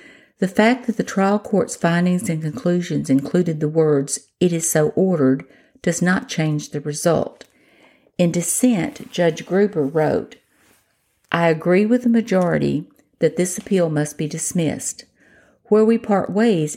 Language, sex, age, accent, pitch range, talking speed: English, female, 50-69, American, 155-195 Hz, 145 wpm